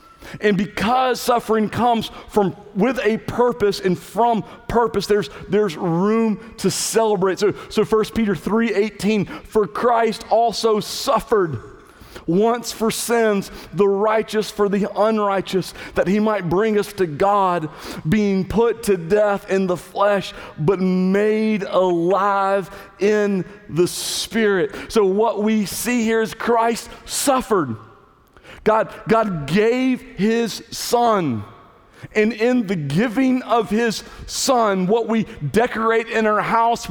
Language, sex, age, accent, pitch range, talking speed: English, male, 40-59, American, 190-225 Hz, 130 wpm